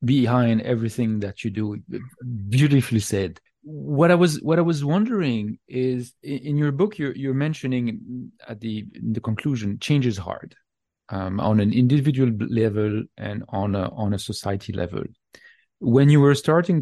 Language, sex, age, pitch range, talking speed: English, male, 40-59, 110-140 Hz, 165 wpm